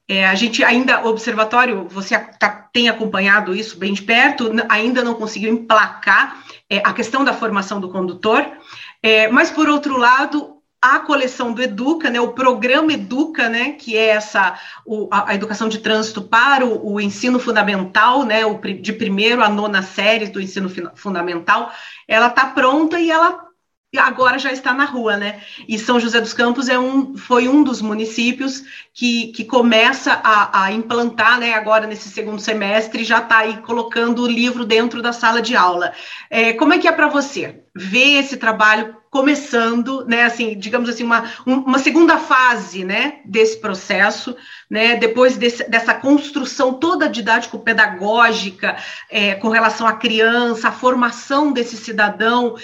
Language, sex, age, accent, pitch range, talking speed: Portuguese, female, 40-59, Brazilian, 215-255 Hz, 155 wpm